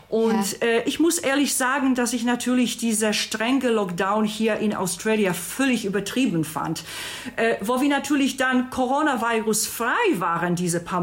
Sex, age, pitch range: female, 50-69, 185-235 Hz